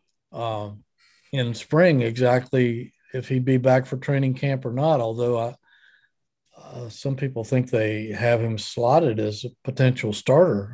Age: 50-69